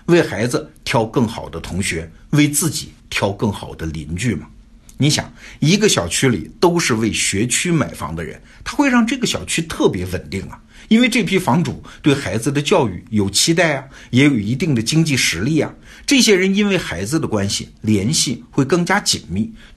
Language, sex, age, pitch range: Chinese, male, 60-79, 90-150 Hz